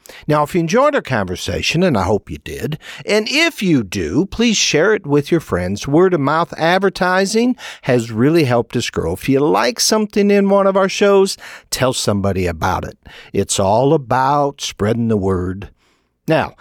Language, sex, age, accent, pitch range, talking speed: English, male, 60-79, American, 105-180 Hz, 175 wpm